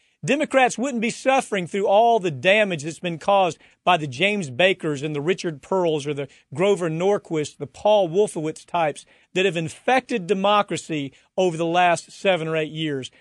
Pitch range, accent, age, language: 170-220 Hz, American, 40-59, English